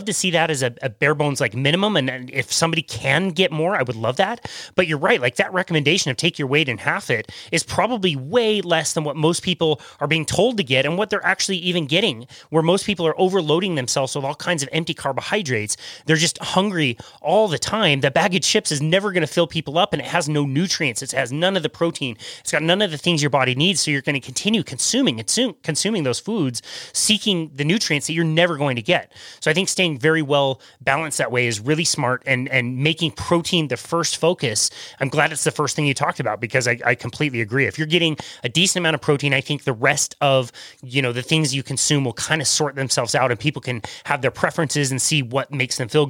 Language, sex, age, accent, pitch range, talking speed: English, male, 30-49, American, 135-175 Hz, 245 wpm